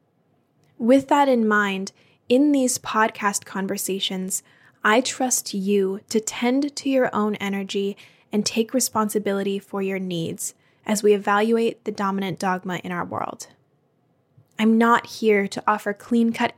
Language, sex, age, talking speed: English, female, 10-29, 140 wpm